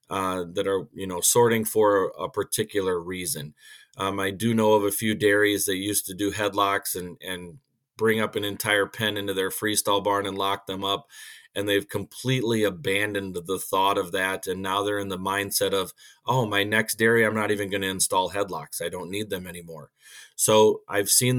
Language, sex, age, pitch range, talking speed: English, male, 30-49, 95-110 Hz, 200 wpm